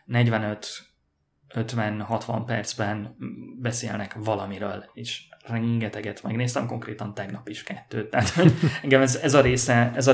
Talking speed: 110 wpm